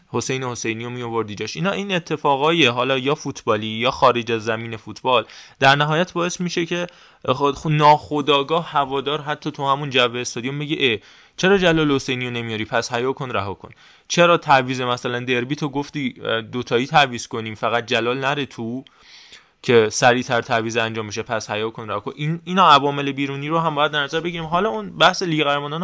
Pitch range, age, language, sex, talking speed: 120-150 Hz, 20-39, Persian, male, 180 wpm